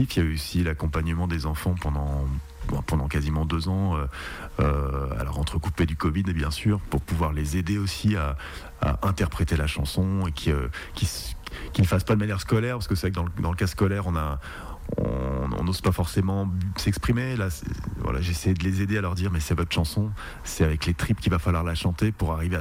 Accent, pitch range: French, 75-95 Hz